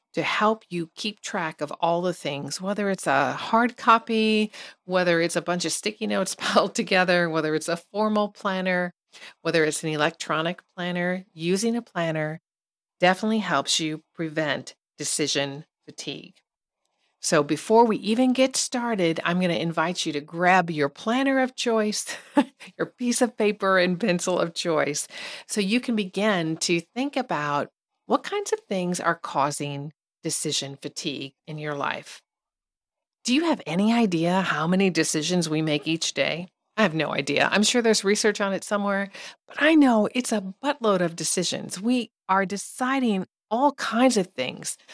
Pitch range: 165-220 Hz